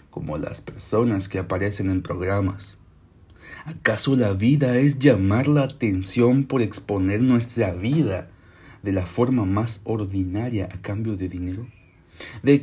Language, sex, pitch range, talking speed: Spanish, male, 90-115 Hz, 135 wpm